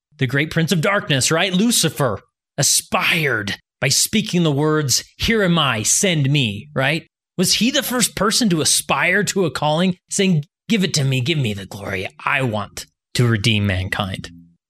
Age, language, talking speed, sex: 30-49, English, 170 wpm, male